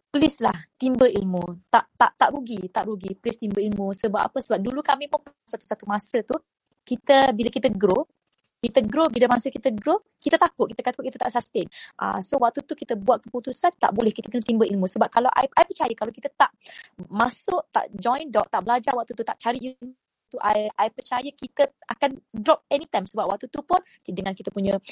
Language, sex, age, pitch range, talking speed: Malay, female, 20-39, 220-285 Hz, 205 wpm